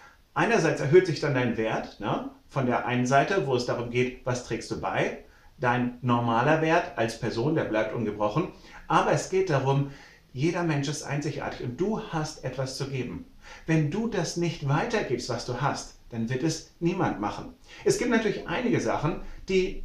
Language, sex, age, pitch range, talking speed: German, male, 40-59, 130-170 Hz, 180 wpm